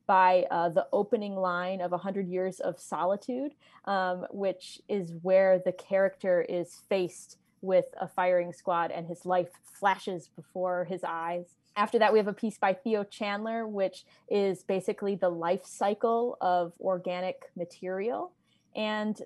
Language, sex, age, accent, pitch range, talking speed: English, female, 20-39, American, 180-205 Hz, 150 wpm